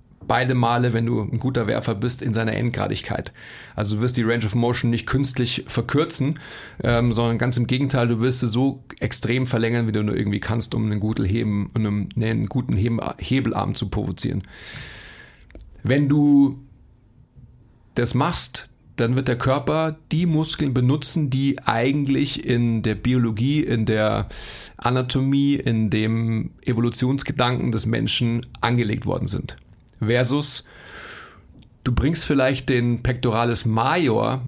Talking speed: 135 wpm